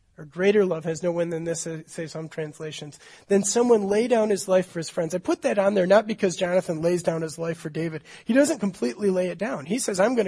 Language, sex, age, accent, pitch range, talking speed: English, male, 30-49, American, 165-215 Hz, 255 wpm